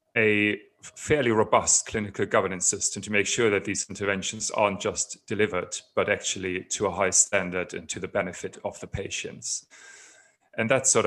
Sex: male